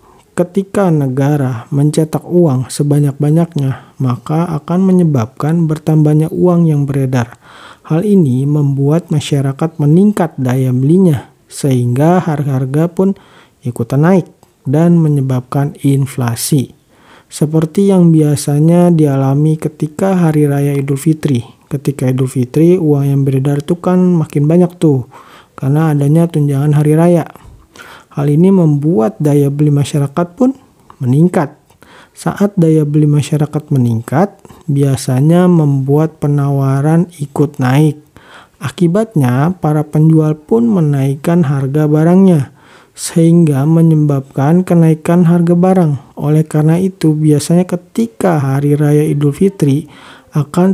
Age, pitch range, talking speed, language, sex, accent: 40-59, 140-170 Hz, 110 wpm, Indonesian, male, native